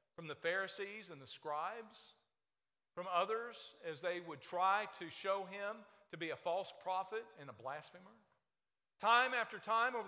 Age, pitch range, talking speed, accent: 50-69, 160-205 Hz, 160 wpm, American